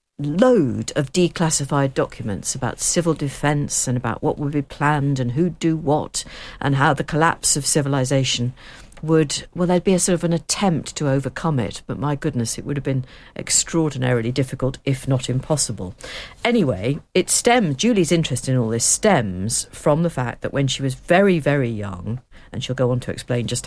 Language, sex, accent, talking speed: English, female, British, 185 wpm